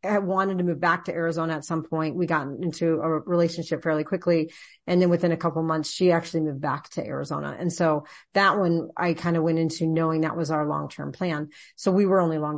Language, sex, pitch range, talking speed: English, female, 165-185 Hz, 240 wpm